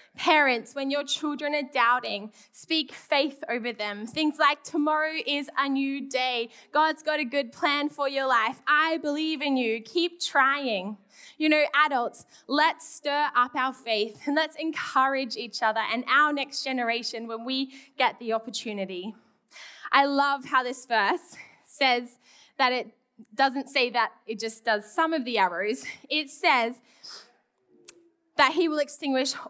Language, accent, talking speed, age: English, Australian, 155 wpm, 10-29